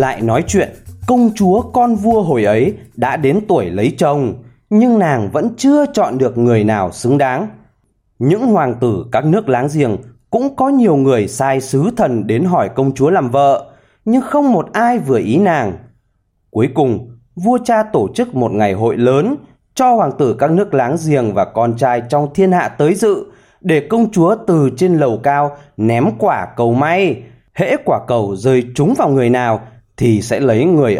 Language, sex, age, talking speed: Vietnamese, male, 20-39, 190 wpm